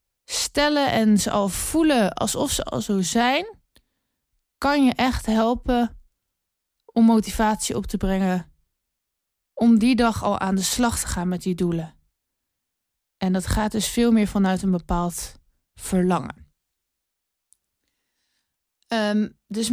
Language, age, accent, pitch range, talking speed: Dutch, 20-39, Dutch, 180-225 Hz, 130 wpm